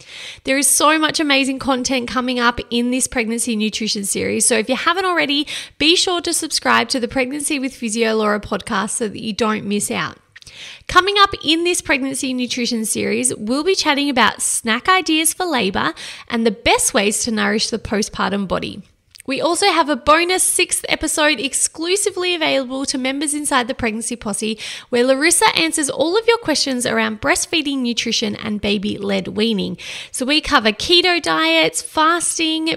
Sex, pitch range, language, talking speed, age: female, 230-310 Hz, English, 170 wpm, 20-39